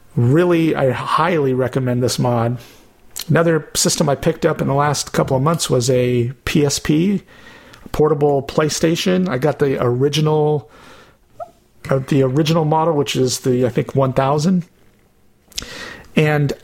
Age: 50-69